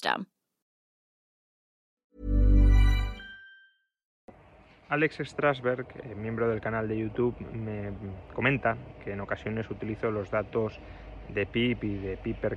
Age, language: 20-39, Spanish